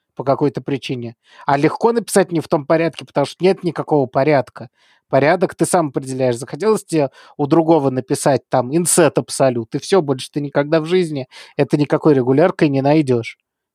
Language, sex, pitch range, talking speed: Russian, male, 135-170 Hz, 170 wpm